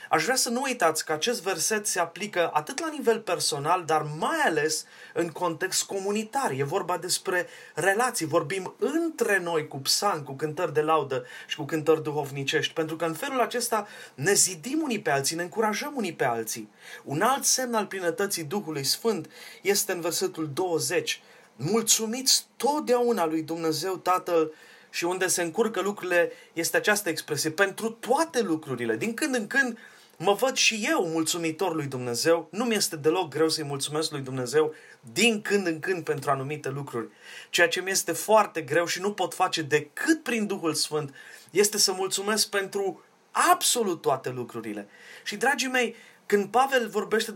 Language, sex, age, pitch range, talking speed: Romanian, male, 30-49, 160-230 Hz, 170 wpm